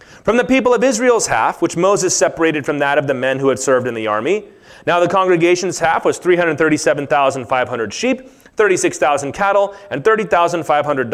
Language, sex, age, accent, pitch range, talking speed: English, male, 30-49, American, 130-180 Hz, 165 wpm